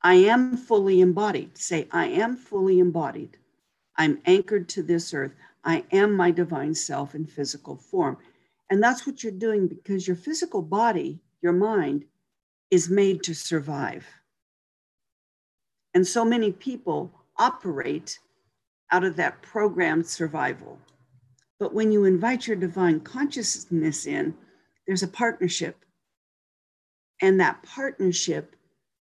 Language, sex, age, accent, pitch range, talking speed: English, female, 50-69, American, 165-215 Hz, 125 wpm